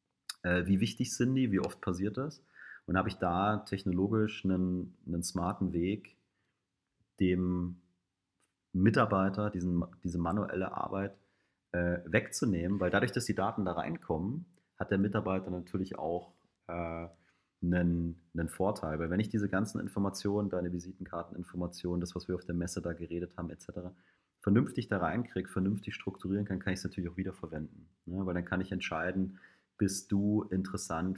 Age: 30-49